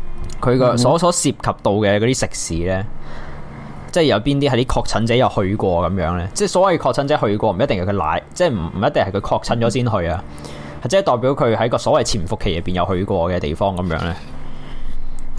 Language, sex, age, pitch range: Chinese, male, 20-39, 90-120 Hz